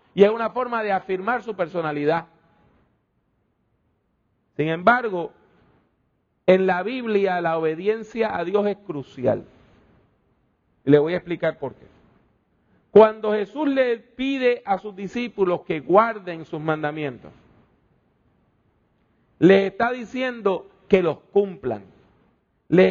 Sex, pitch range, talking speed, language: male, 170-225 Hz, 115 wpm, English